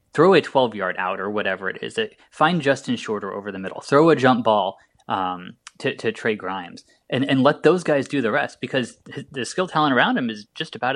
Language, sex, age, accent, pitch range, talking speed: English, male, 20-39, American, 110-180 Hz, 220 wpm